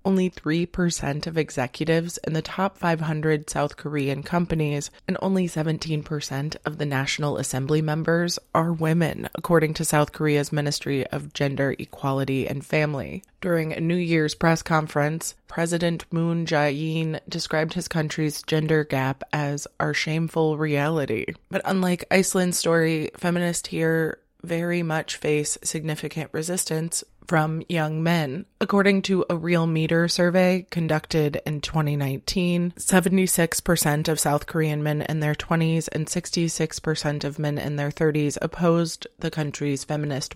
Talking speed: 135 wpm